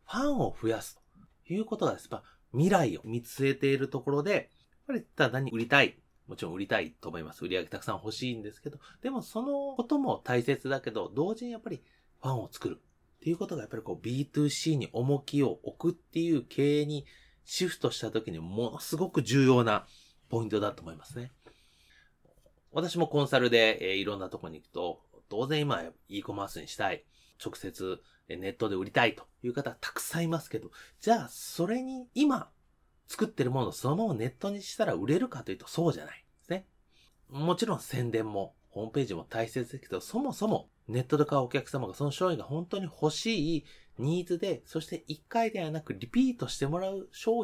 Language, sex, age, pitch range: Japanese, male, 30-49, 125-190 Hz